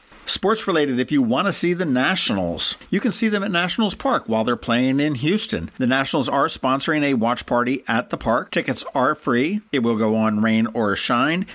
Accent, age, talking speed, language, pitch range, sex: American, 50-69, 210 wpm, English, 120-175 Hz, male